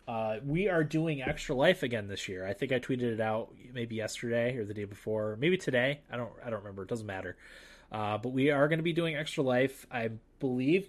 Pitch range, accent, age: 100-125 Hz, American, 20-39